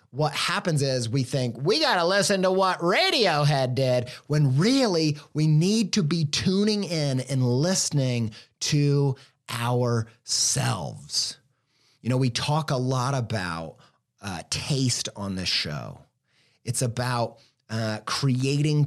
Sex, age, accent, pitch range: male, 30-49, American, 130-175 Hz